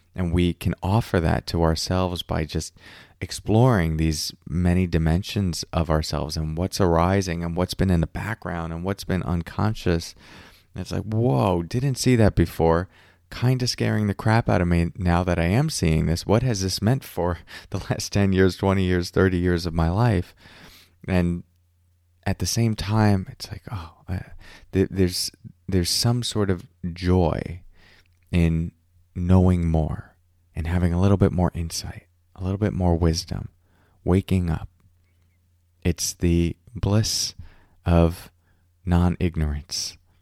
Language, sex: English, male